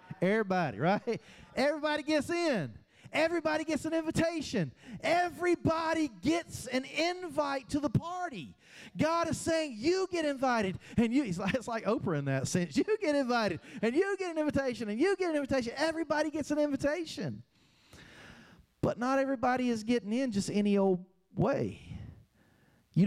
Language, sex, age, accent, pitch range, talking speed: English, male, 40-59, American, 160-245 Hz, 150 wpm